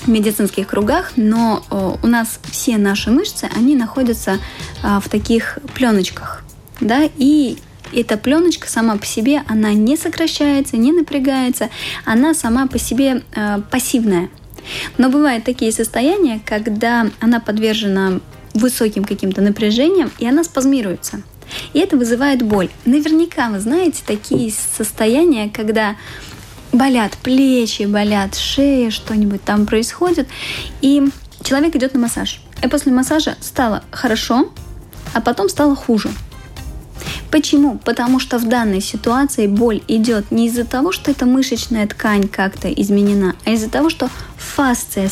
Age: 20-39